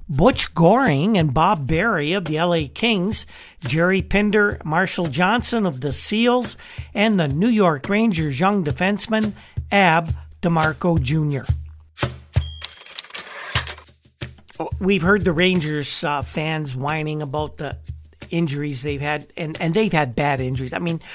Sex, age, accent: male, 50-69, American